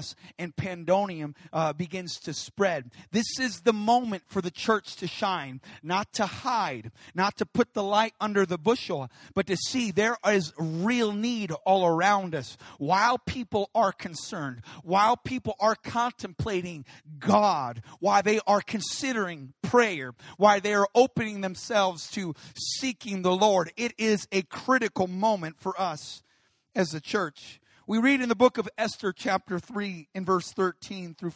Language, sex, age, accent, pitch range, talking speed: English, male, 40-59, American, 165-210 Hz, 155 wpm